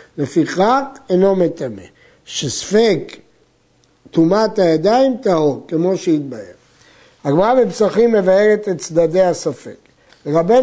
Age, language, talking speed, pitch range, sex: 60-79, Hebrew, 90 wpm, 170-225 Hz, male